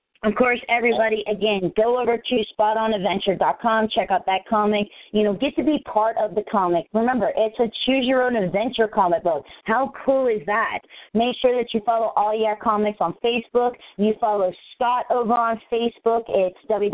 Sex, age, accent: female, 40-59, American